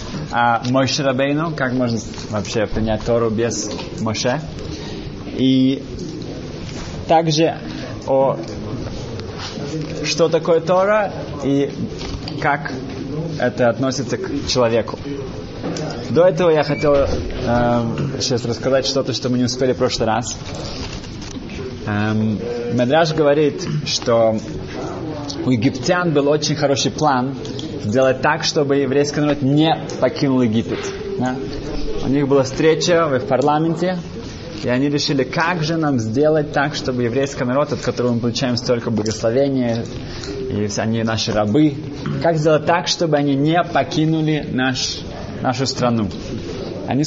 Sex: male